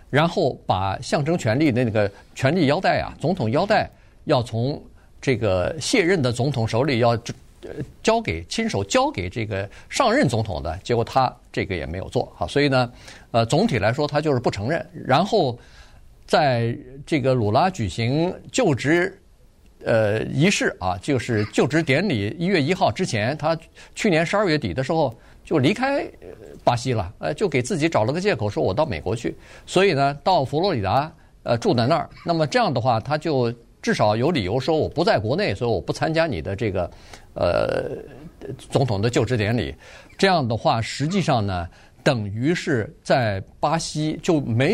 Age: 50-69